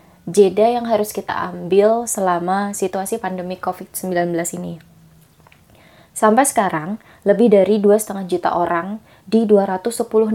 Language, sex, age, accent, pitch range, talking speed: Indonesian, female, 20-39, native, 180-220 Hz, 110 wpm